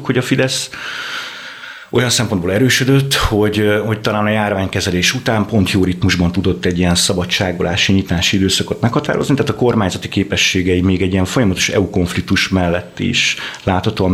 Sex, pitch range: male, 95-115 Hz